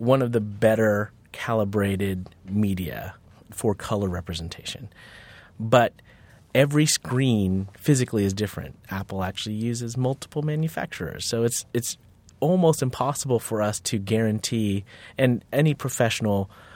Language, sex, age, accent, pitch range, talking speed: English, male, 30-49, American, 100-130 Hz, 115 wpm